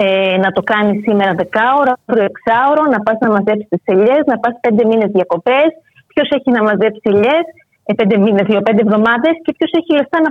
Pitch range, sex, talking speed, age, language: 200-270 Hz, female, 185 wpm, 30-49, Greek